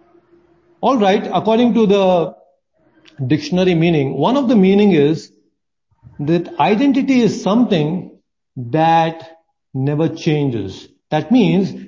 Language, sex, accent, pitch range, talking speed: English, male, Indian, 150-225 Hz, 105 wpm